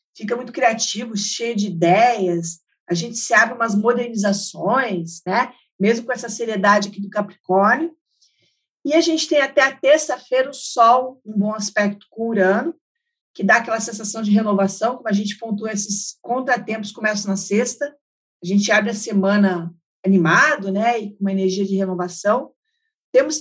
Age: 50-69